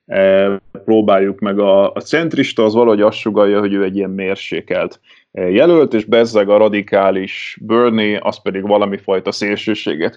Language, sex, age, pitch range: Hungarian, male, 30-49, 100-140 Hz